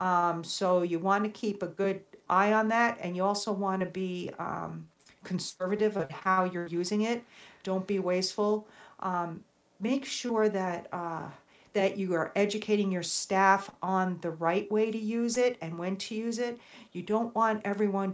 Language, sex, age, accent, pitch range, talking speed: English, female, 50-69, American, 175-210 Hz, 180 wpm